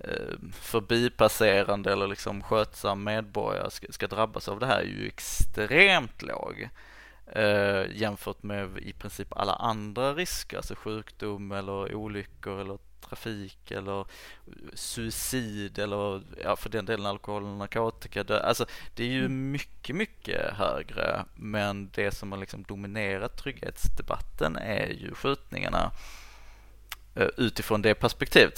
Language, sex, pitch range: Swedish, male, 100-115 Hz